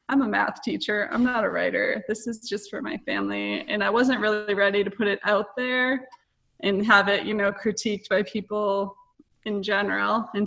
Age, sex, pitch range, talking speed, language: 20-39, female, 195-230 Hz, 200 wpm, English